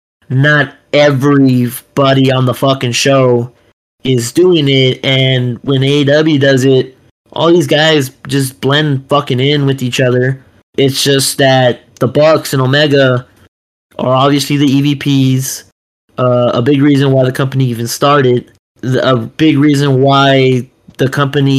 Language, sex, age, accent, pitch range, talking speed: English, male, 20-39, American, 125-145 Hz, 140 wpm